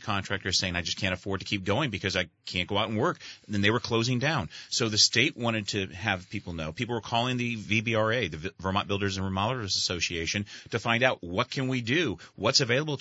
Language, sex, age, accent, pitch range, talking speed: English, male, 30-49, American, 95-120 Hz, 225 wpm